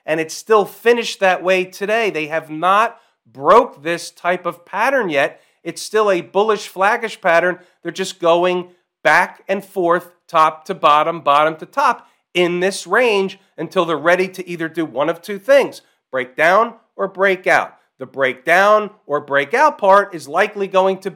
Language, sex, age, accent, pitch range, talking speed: English, male, 40-59, American, 155-200 Hz, 175 wpm